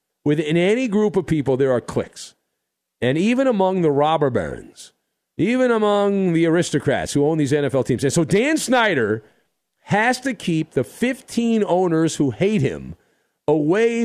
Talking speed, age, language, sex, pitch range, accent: 160 wpm, 50-69, English, male, 140-210 Hz, American